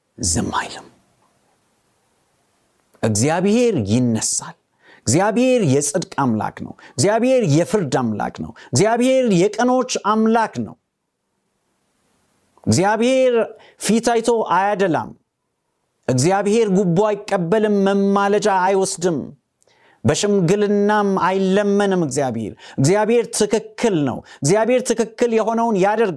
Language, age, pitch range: Amharic, 50-69, 150-220 Hz